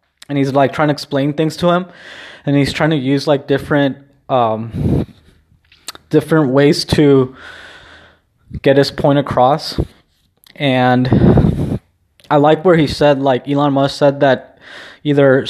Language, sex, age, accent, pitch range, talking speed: English, male, 20-39, American, 130-150 Hz, 140 wpm